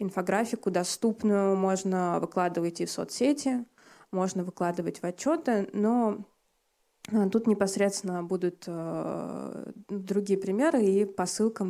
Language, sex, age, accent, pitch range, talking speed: Russian, female, 20-39, native, 185-210 Hz, 105 wpm